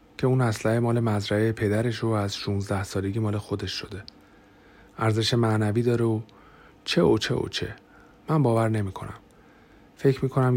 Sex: male